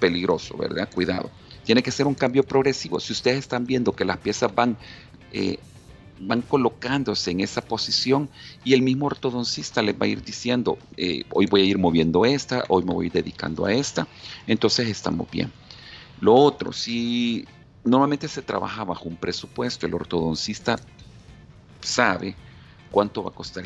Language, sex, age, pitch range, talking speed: Spanish, male, 40-59, 90-120 Hz, 160 wpm